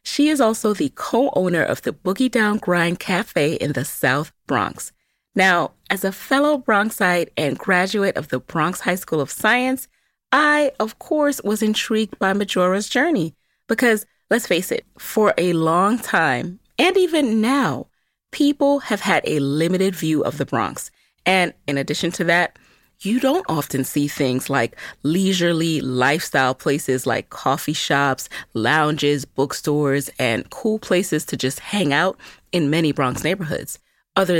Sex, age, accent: female, 30-49, American